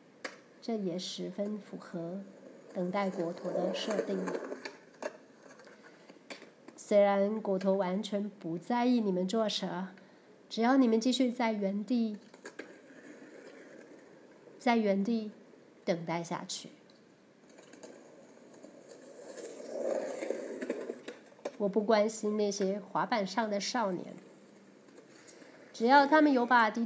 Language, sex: Chinese, female